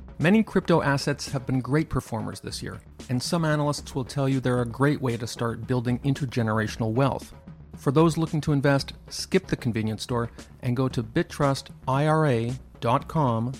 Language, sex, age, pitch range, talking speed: English, male, 40-59, 110-140 Hz, 165 wpm